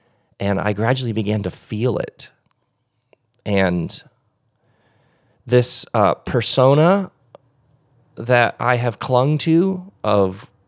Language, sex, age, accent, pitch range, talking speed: English, male, 30-49, American, 95-125 Hz, 95 wpm